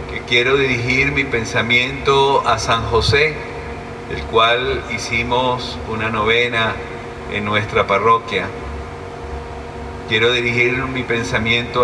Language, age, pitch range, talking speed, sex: Spanish, 50-69, 115-150 Hz, 95 wpm, male